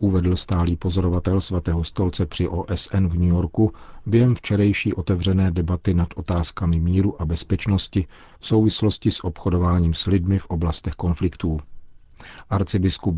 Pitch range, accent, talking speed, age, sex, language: 85-95 Hz, native, 130 wpm, 40-59, male, Czech